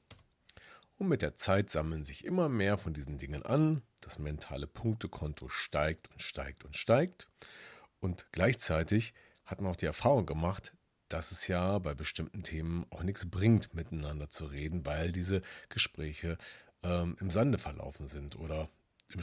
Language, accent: German, German